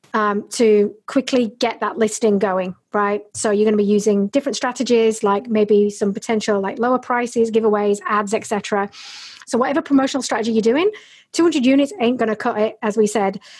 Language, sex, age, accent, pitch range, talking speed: English, female, 40-59, British, 215-270 Hz, 185 wpm